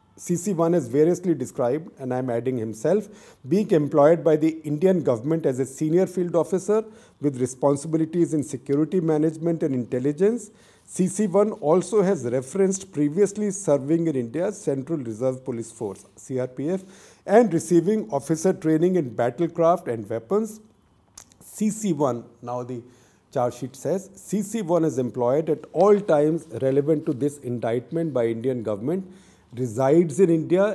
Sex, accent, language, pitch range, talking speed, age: male, Indian, English, 125-180 Hz, 135 wpm, 50-69